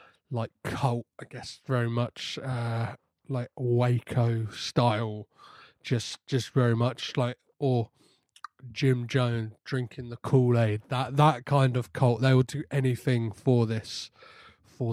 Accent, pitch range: British, 120-170 Hz